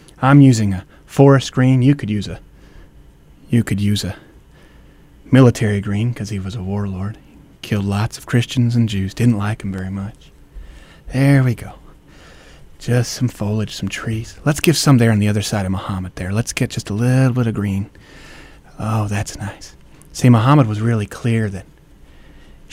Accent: American